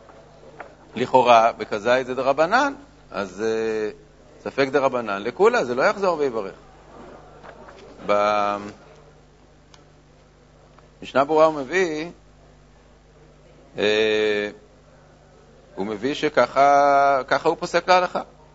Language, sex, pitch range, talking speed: Hebrew, male, 125-160 Hz, 80 wpm